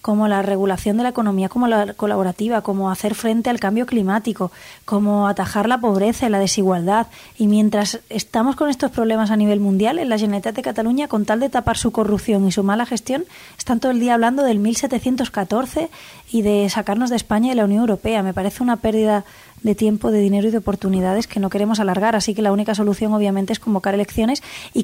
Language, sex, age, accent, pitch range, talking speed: French, female, 20-39, Spanish, 205-235 Hz, 215 wpm